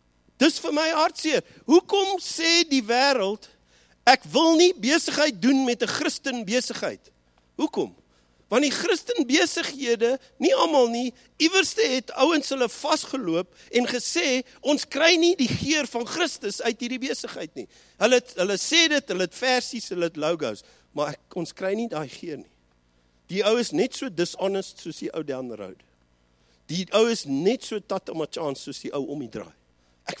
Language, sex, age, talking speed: English, male, 50-69, 175 wpm